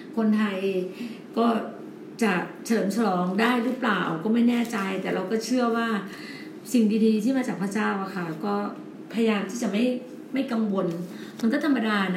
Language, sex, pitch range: Thai, female, 190-230 Hz